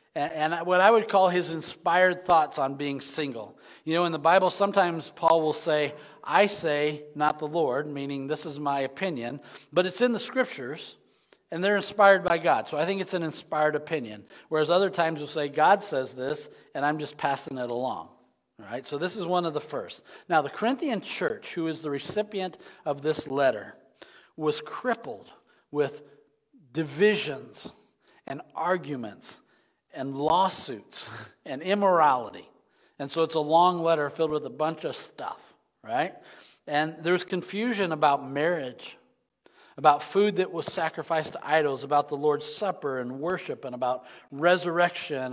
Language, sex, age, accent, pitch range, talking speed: English, male, 40-59, American, 145-185 Hz, 165 wpm